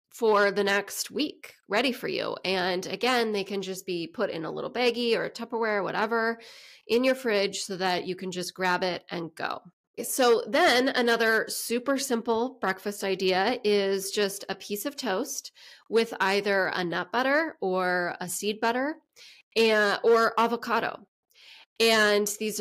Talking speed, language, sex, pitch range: 160 wpm, English, female, 185-235 Hz